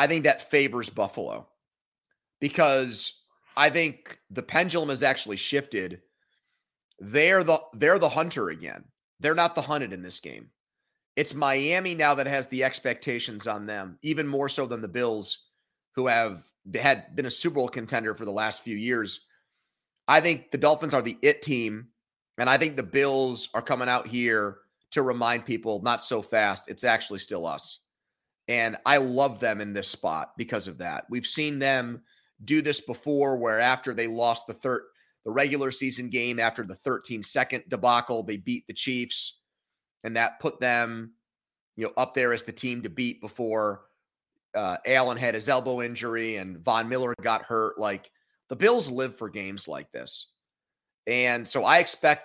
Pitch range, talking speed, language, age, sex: 115-140 Hz, 175 wpm, English, 30-49, male